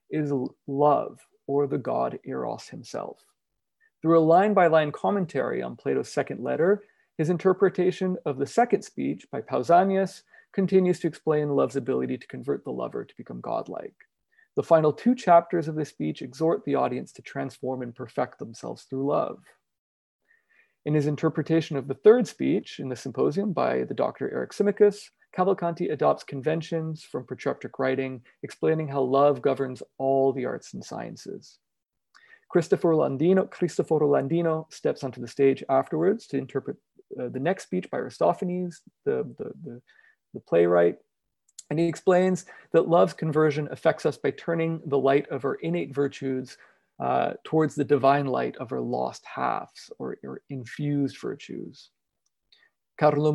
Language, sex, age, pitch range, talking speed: English, male, 30-49, 135-180 Hz, 150 wpm